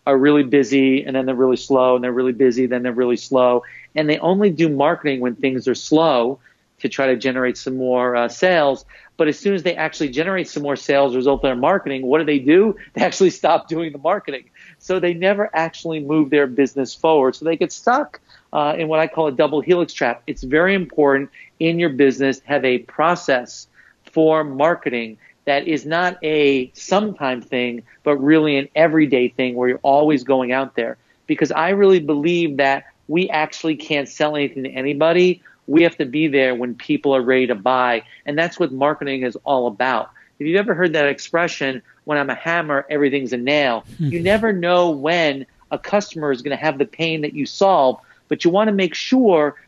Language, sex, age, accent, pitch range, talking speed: English, male, 50-69, American, 130-165 Hz, 210 wpm